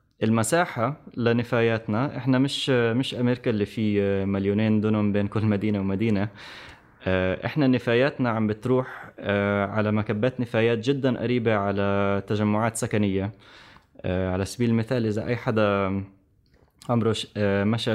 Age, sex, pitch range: 20-39, male, 100-120 Hz